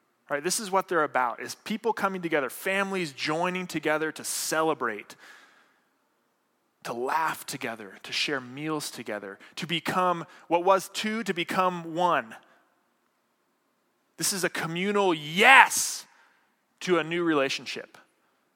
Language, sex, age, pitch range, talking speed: English, male, 20-39, 135-180 Hz, 130 wpm